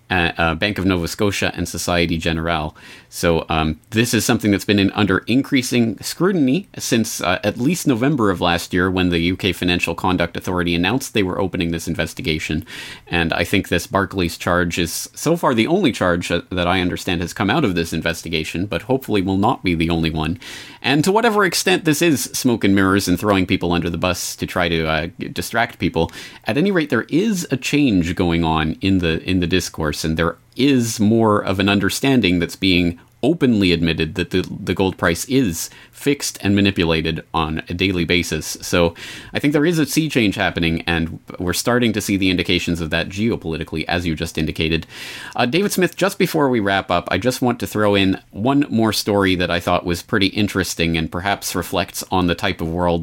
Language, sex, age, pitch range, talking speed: English, male, 30-49, 85-110 Hz, 205 wpm